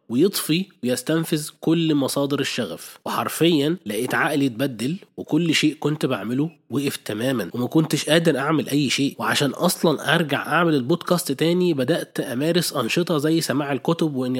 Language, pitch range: Arabic, 130-165 Hz